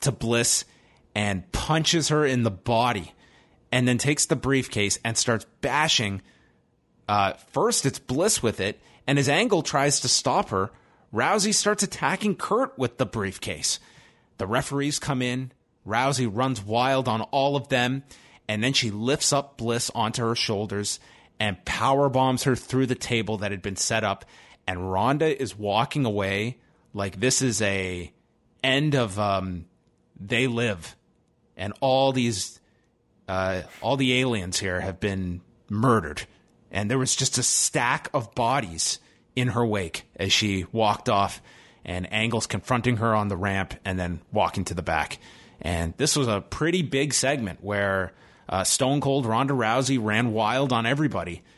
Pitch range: 100-130 Hz